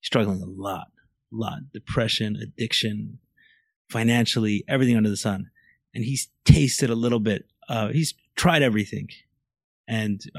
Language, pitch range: English, 105-130 Hz